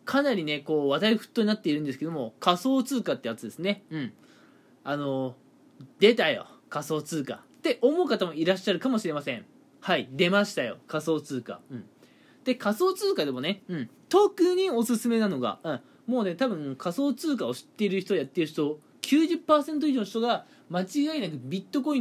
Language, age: Japanese, 20-39